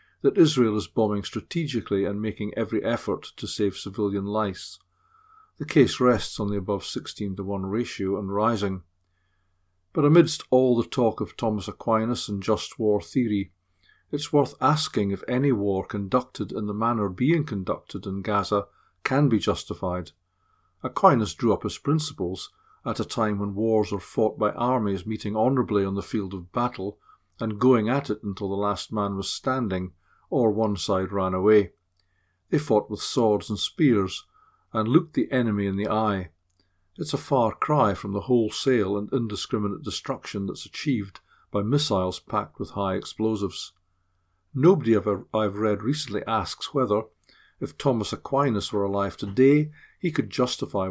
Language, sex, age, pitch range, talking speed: English, male, 40-59, 100-120 Hz, 160 wpm